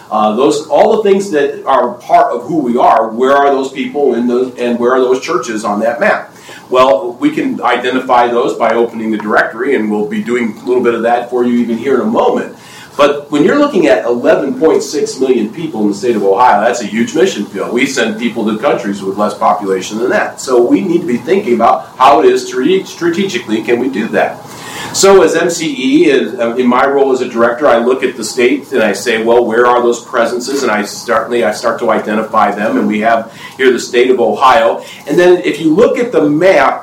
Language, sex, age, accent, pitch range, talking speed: English, male, 40-59, American, 115-170 Hz, 230 wpm